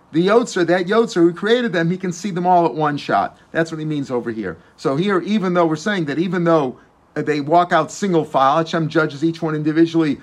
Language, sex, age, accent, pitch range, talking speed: English, male, 50-69, American, 120-160 Hz, 235 wpm